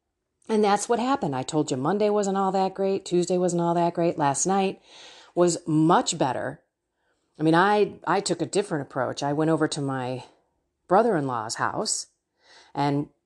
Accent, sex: American, female